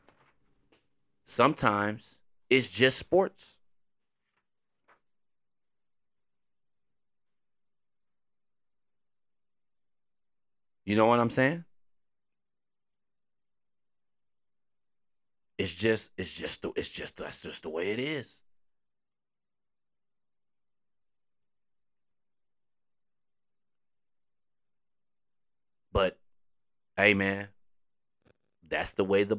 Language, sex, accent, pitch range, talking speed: English, male, American, 75-95 Hz, 55 wpm